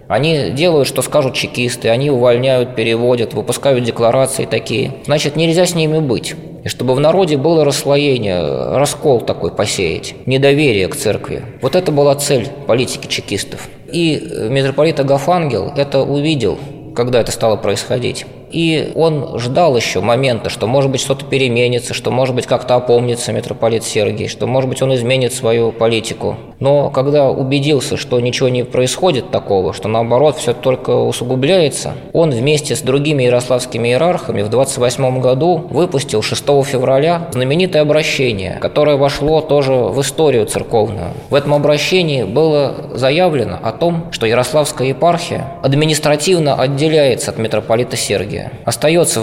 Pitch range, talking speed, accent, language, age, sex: 120-150 Hz, 140 wpm, native, Russian, 20-39, male